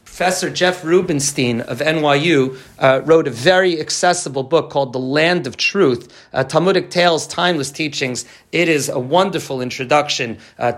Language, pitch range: English, 125-160 Hz